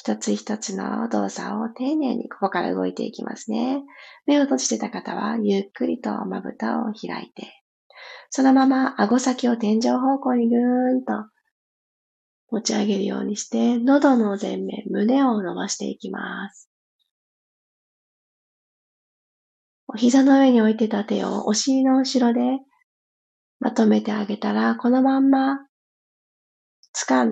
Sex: female